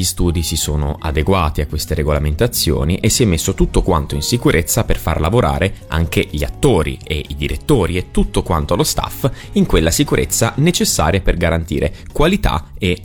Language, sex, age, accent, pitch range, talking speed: Italian, male, 30-49, native, 75-95 Hz, 175 wpm